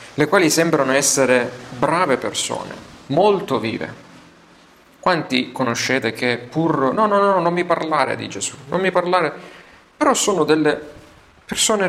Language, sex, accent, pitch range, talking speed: Italian, male, native, 120-155 Hz, 140 wpm